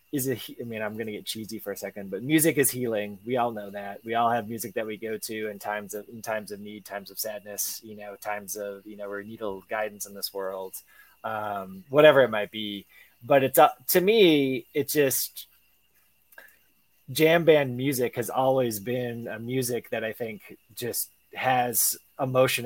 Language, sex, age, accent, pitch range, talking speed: English, male, 20-39, American, 110-140 Hz, 200 wpm